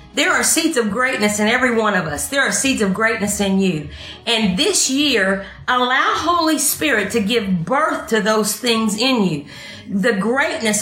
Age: 50-69